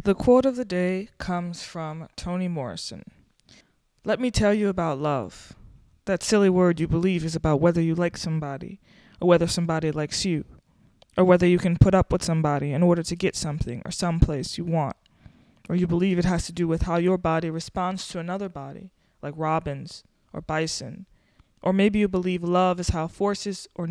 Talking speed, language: 190 wpm, English